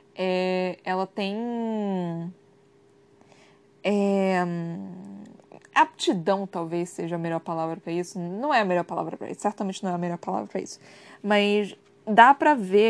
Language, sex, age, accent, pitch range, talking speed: Portuguese, female, 20-39, Brazilian, 195-305 Hz, 145 wpm